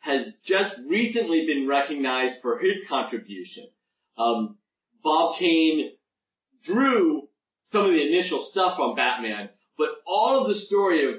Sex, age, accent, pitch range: male, 40-59, American, 135-220 Hz